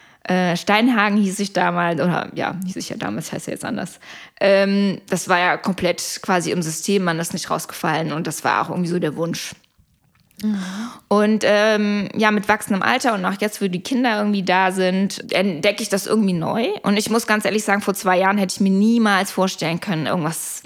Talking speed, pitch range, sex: 210 wpm, 180-215 Hz, female